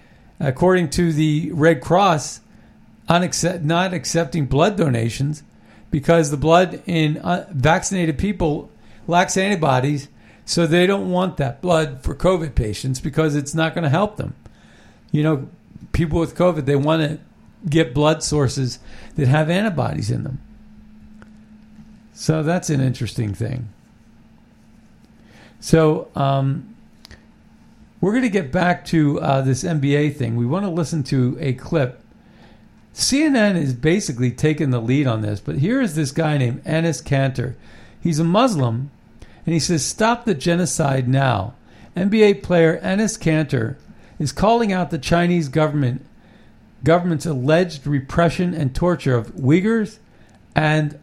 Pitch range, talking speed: 135-175 Hz, 140 wpm